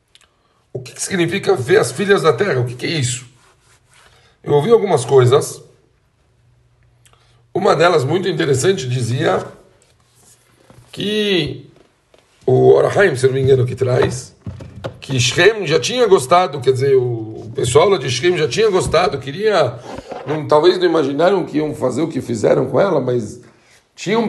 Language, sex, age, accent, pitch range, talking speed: Portuguese, male, 60-79, Brazilian, 125-185 Hz, 150 wpm